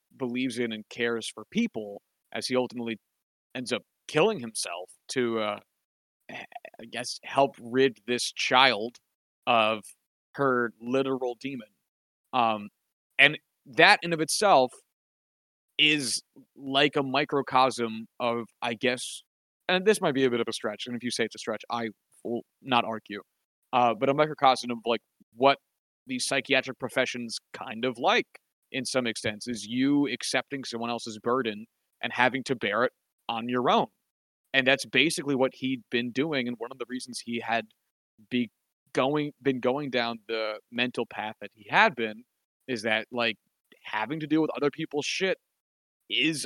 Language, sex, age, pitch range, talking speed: English, male, 30-49, 115-135 Hz, 160 wpm